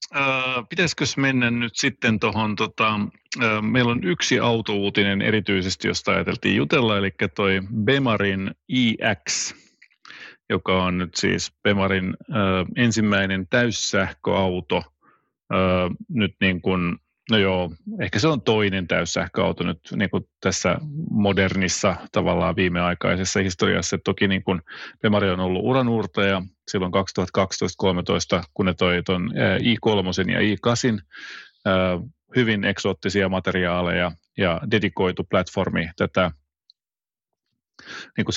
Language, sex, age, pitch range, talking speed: Finnish, male, 30-49, 95-110 Hz, 100 wpm